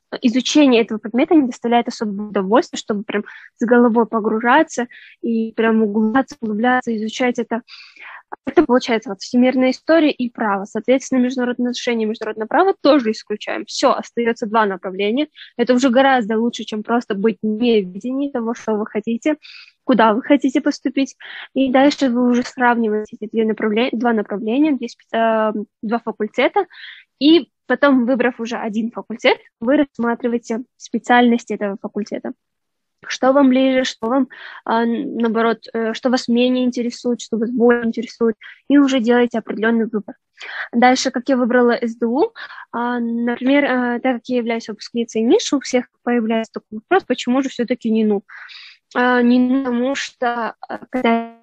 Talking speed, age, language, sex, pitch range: 140 wpm, 10-29, Russian, female, 225-255 Hz